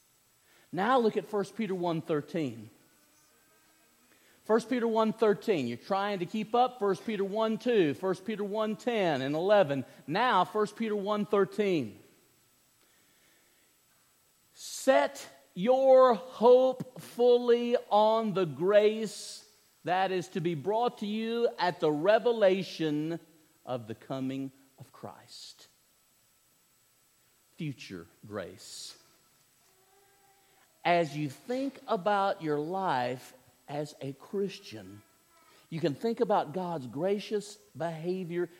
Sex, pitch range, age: male, 145-215 Hz, 50-69